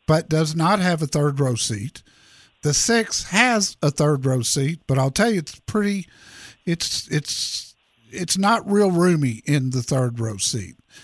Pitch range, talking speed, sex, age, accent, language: 135-180 Hz, 175 wpm, male, 50-69, American, English